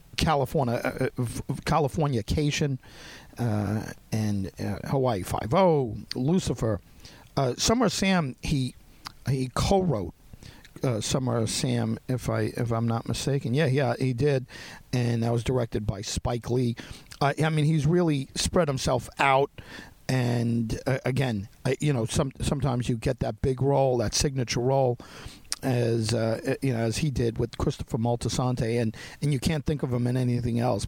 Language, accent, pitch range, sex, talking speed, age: English, American, 115-140 Hz, male, 155 wpm, 50-69